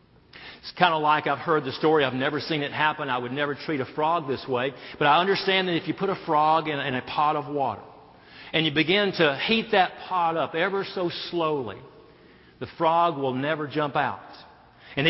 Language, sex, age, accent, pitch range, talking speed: English, male, 50-69, American, 135-170 Hz, 210 wpm